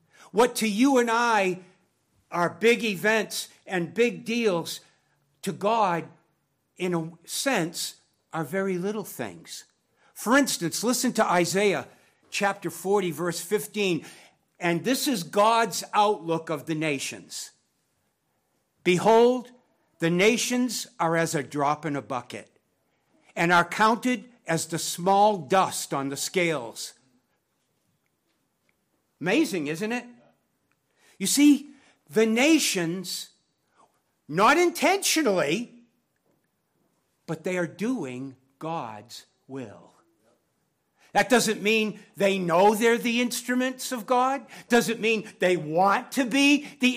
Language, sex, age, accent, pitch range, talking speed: English, male, 60-79, American, 165-240 Hz, 115 wpm